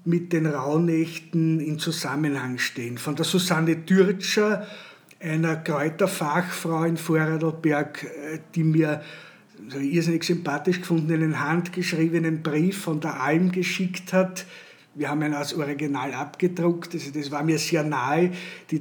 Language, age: German, 50-69